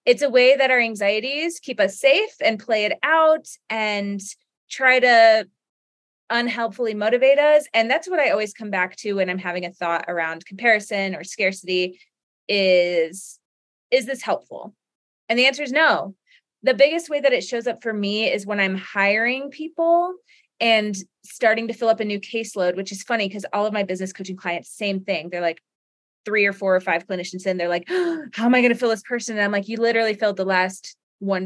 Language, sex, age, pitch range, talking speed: English, female, 20-39, 195-270 Hz, 205 wpm